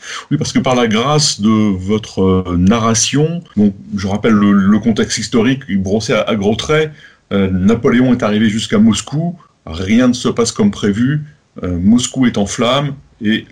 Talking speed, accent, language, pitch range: 175 wpm, French, French, 100-155 Hz